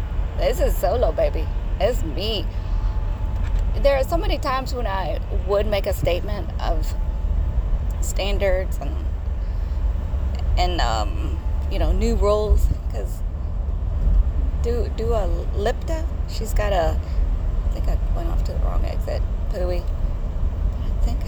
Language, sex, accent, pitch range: English, female, American, 80-95 Hz